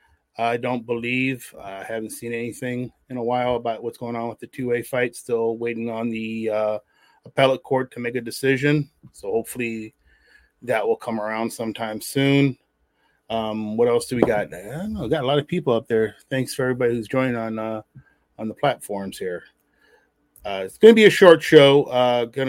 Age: 30-49